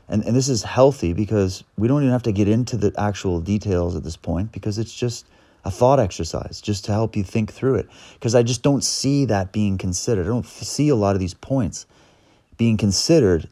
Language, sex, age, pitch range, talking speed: English, male, 30-49, 90-115 Hz, 220 wpm